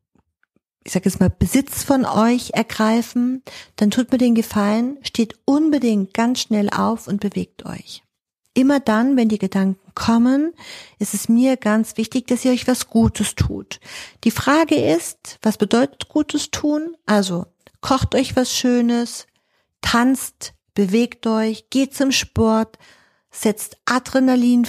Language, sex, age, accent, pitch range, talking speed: German, female, 50-69, German, 205-245 Hz, 140 wpm